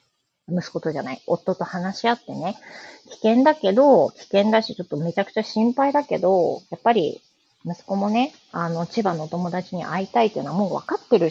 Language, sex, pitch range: Japanese, female, 170-235 Hz